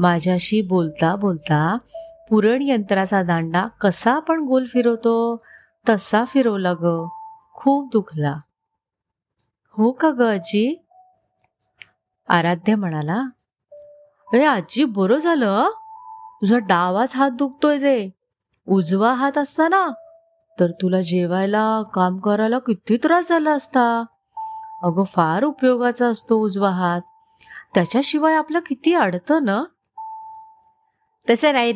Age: 30-49